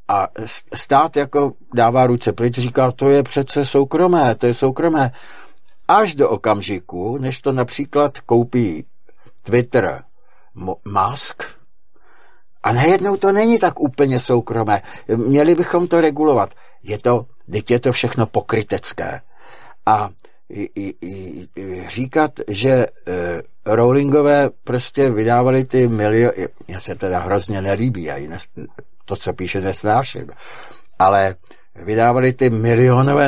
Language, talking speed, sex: Czech, 120 wpm, male